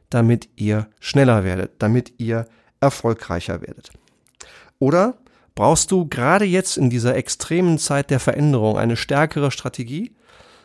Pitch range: 125-165 Hz